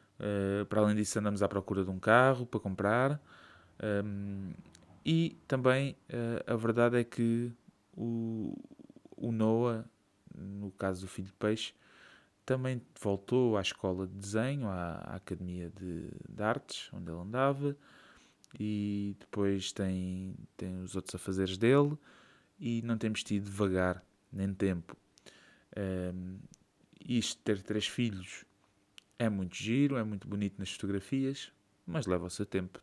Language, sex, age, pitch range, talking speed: Portuguese, male, 20-39, 95-120 Hz, 145 wpm